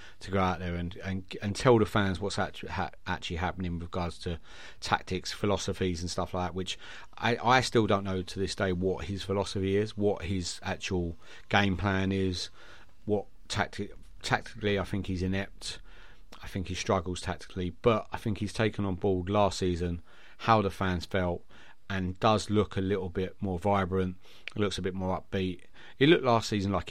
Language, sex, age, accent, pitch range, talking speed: English, male, 30-49, British, 90-100 Hz, 190 wpm